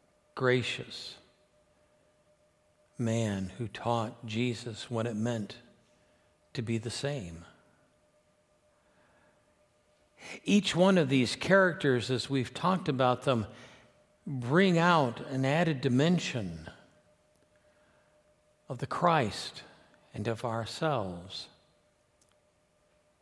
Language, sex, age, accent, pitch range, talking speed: English, male, 60-79, American, 115-145 Hz, 85 wpm